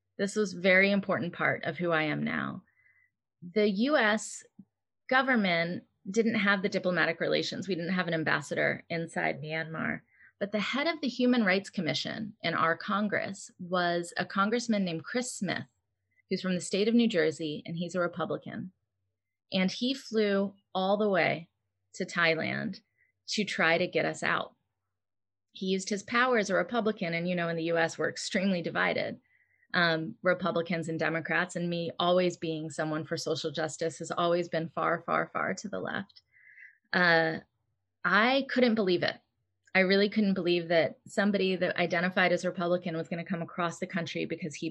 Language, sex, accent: Hindi, female, American